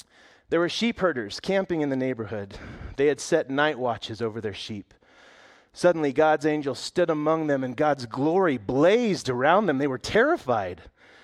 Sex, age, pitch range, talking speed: male, 30-49, 110-190 Hz, 165 wpm